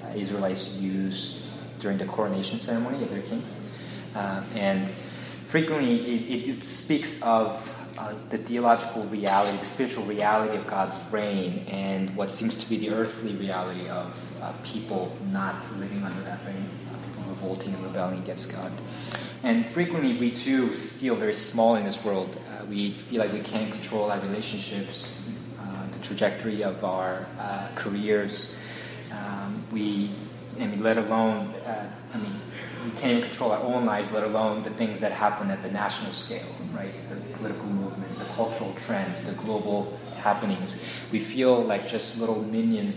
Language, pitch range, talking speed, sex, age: English, 100-115 Hz, 160 wpm, male, 20-39